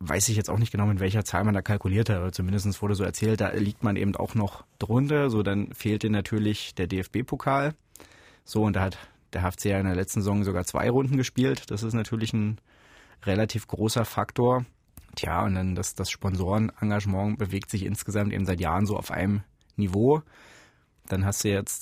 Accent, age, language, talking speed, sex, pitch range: German, 30-49, German, 205 wpm, male, 95-110 Hz